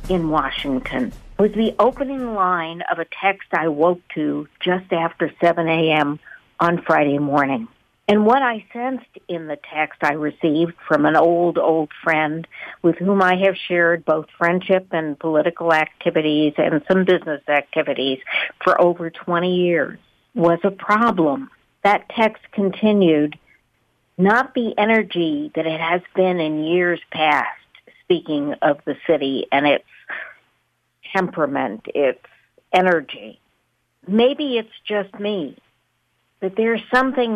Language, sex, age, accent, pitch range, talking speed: English, female, 60-79, American, 165-215 Hz, 135 wpm